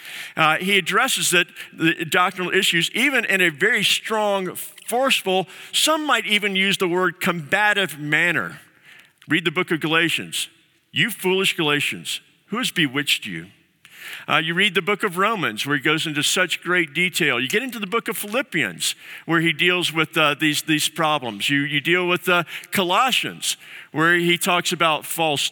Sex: male